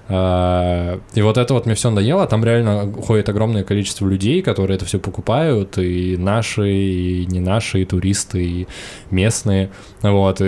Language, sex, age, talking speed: Russian, male, 20-39, 155 wpm